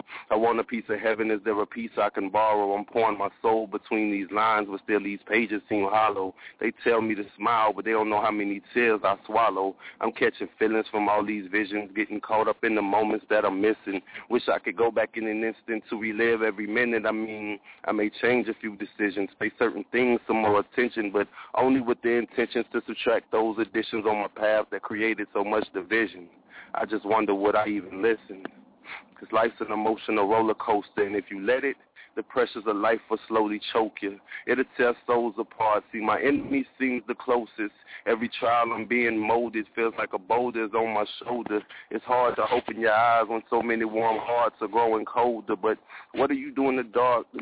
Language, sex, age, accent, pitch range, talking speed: English, male, 30-49, American, 105-115 Hz, 215 wpm